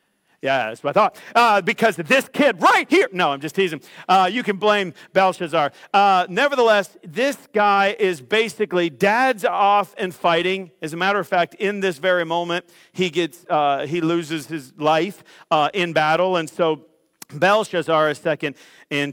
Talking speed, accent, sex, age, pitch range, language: 175 wpm, American, male, 50-69, 175-235 Hz, English